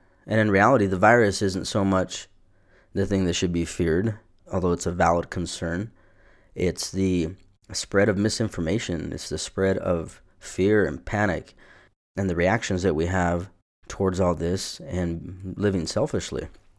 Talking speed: 155 wpm